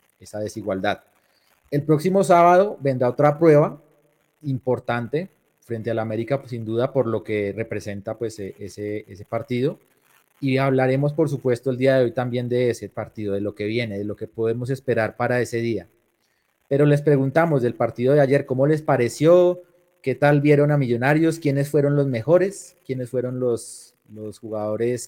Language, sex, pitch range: Spanish, male, 115-145 Hz